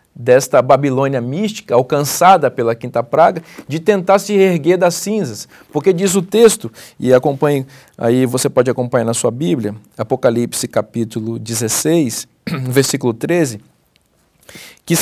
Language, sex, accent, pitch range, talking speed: Portuguese, male, Brazilian, 135-195 Hz, 130 wpm